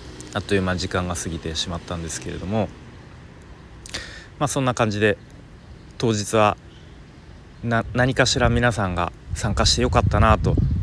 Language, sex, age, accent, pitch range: Japanese, male, 30-49, native, 85-110 Hz